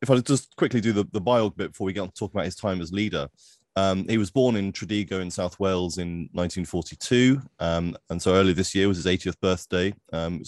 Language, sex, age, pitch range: English, male, 30-49, 85-100 Hz